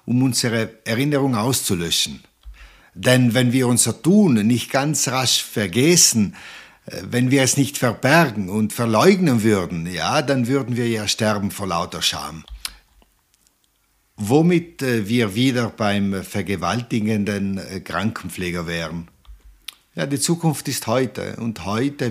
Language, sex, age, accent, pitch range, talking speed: Italian, male, 60-79, German, 95-125 Hz, 120 wpm